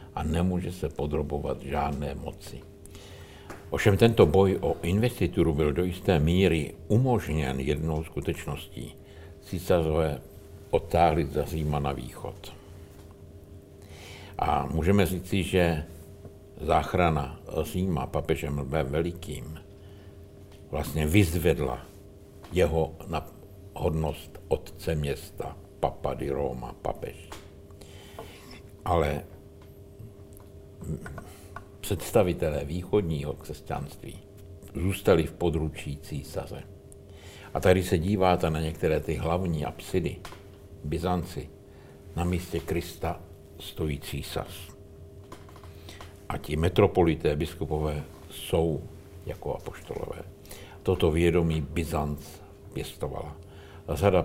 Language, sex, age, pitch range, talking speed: Czech, male, 60-79, 80-100 Hz, 85 wpm